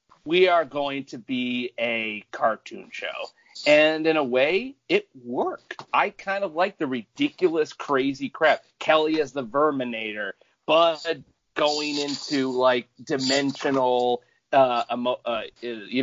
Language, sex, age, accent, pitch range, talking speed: English, male, 40-59, American, 115-155 Hz, 130 wpm